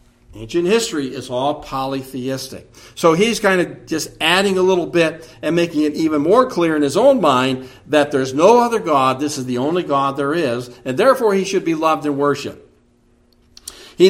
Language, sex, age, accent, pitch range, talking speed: English, male, 60-79, American, 130-190 Hz, 190 wpm